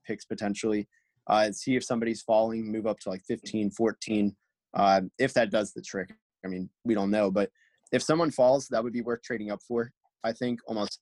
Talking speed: 210 wpm